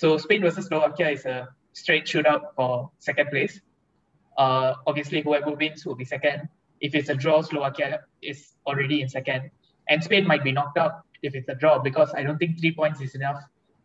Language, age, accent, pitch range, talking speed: English, 20-39, Indian, 135-165 Hz, 195 wpm